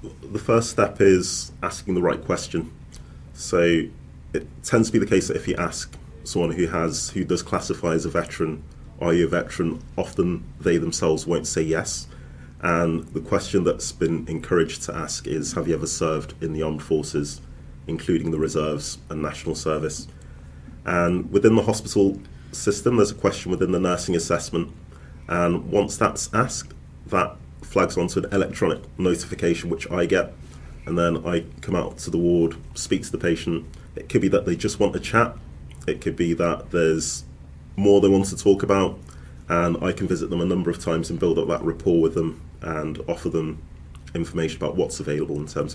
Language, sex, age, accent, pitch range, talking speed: English, male, 30-49, British, 70-85 Hz, 190 wpm